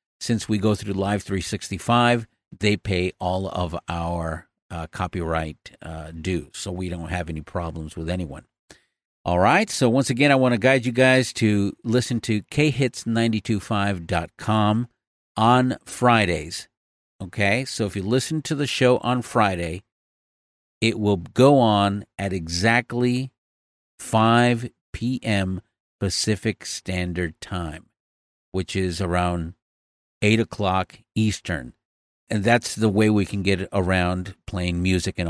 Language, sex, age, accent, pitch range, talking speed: English, male, 50-69, American, 90-120 Hz, 135 wpm